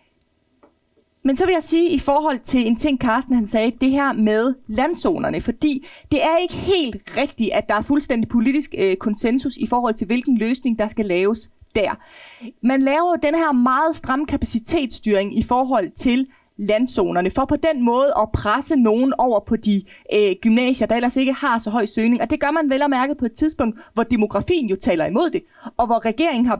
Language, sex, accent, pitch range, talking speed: Danish, female, native, 215-280 Hz, 205 wpm